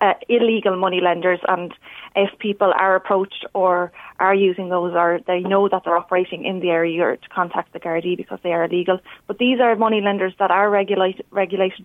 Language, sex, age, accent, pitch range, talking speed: English, female, 20-39, Irish, 185-205 Hz, 200 wpm